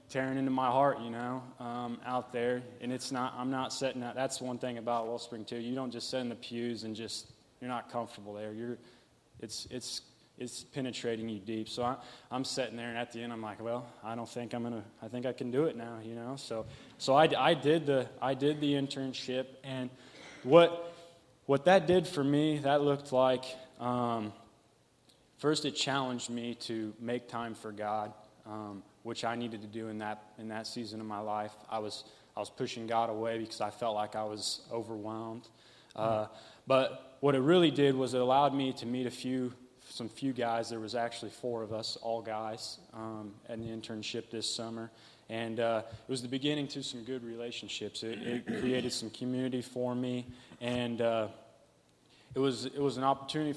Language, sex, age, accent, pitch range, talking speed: English, male, 20-39, American, 115-130 Hz, 205 wpm